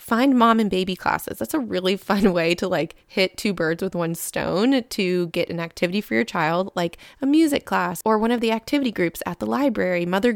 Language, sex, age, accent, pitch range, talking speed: English, female, 20-39, American, 170-200 Hz, 225 wpm